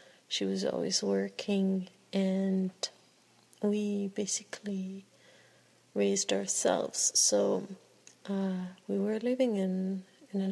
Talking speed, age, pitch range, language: 95 wpm, 30-49, 195-215 Hz, English